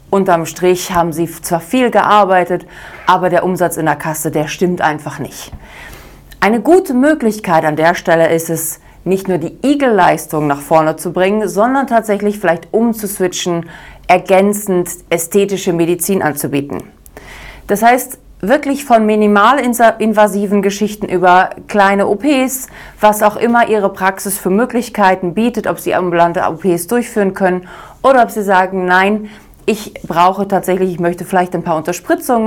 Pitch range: 175-215 Hz